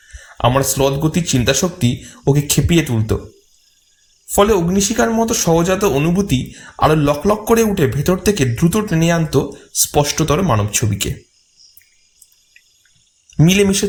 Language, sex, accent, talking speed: Bengali, male, native, 110 wpm